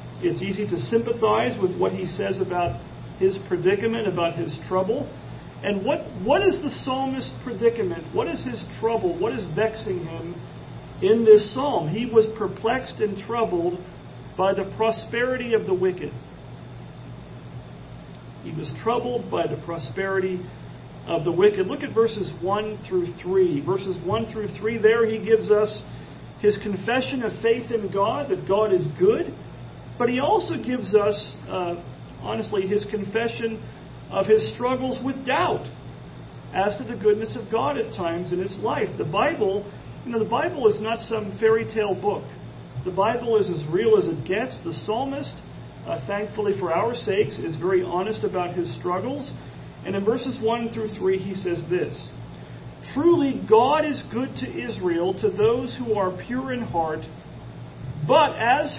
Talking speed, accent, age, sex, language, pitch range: 160 wpm, American, 40-59, male, English, 185-230 Hz